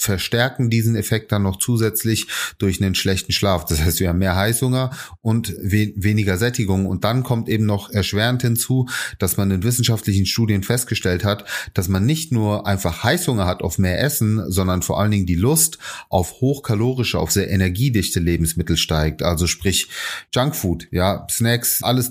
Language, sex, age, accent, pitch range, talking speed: German, male, 30-49, German, 95-115 Hz, 170 wpm